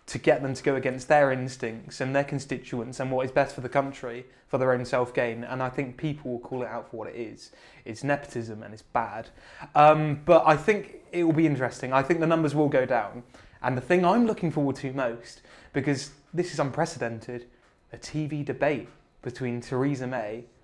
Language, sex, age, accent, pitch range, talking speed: English, male, 20-39, British, 130-165 Hz, 210 wpm